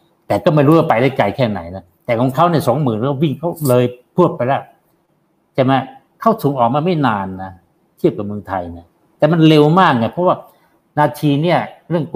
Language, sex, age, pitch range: Thai, male, 60-79, 115-155 Hz